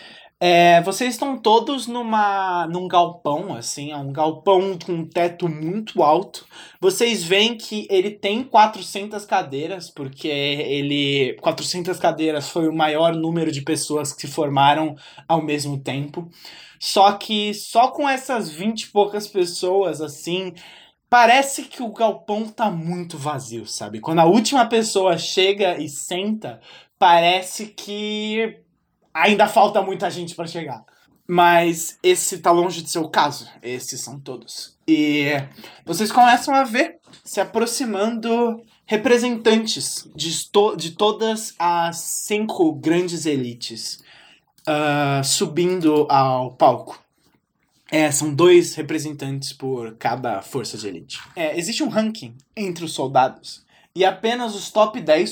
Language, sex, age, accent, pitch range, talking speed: Portuguese, male, 20-39, Brazilian, 150-215 Hz, 130 wpm